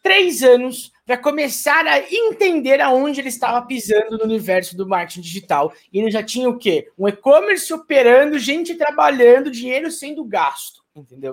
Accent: Brazilian